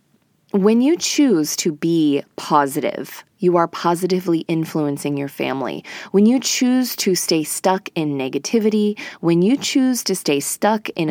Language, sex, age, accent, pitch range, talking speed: English, female, 20-39, American, 155-220 Hz, 145 wpm